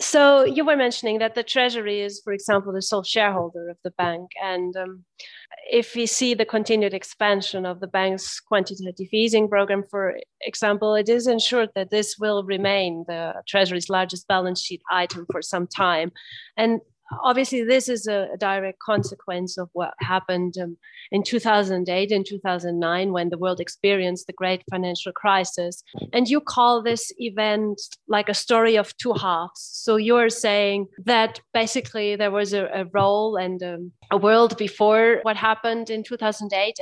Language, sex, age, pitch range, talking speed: English, female, 30-49, 185-220 Hz, 165 wpm